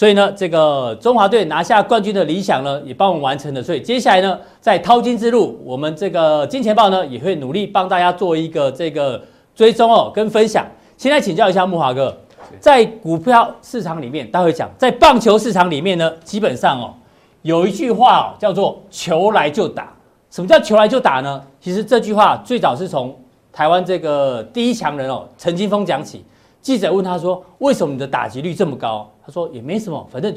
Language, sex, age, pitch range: Chinese, male, 40-59, 165-225 Hz